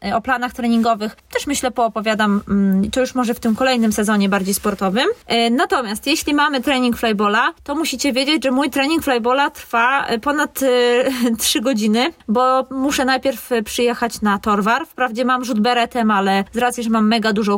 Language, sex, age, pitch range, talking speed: Polish, female, 20-39, 220-275 Hz, 165 wpm